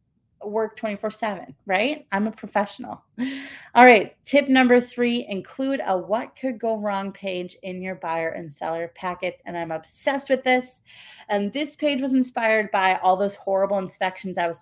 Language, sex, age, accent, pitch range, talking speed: English, female, 30-49, American, 180-240 Hz, 170 wpm